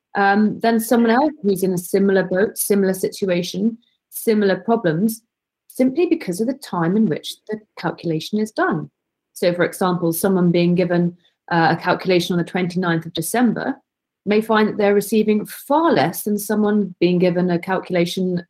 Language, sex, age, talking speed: English, female, 30-49, 165 wpm